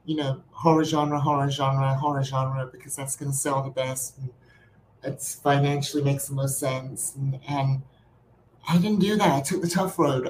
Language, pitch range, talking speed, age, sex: English, 135-160 Hz, 190 wpm, 30-49, male